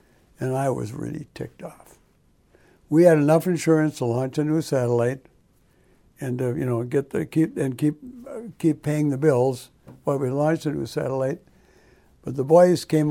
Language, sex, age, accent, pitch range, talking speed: English, male, 60-79, American, 130-155 Hz, 180 wpm